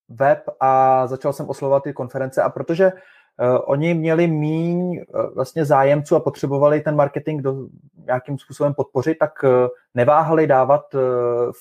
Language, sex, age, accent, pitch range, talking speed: Czech, male, 20-39, native, 130-155 Hz, 150 wpm